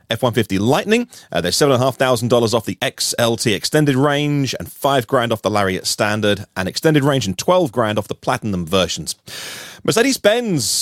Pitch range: 110-150 Hz